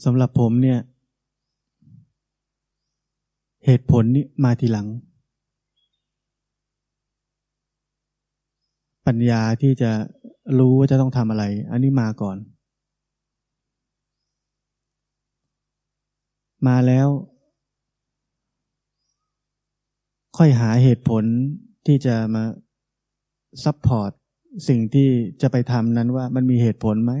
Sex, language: male, Thai